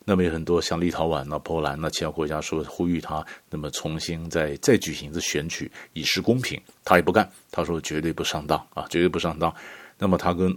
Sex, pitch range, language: male, 80-115 Hz, Chinese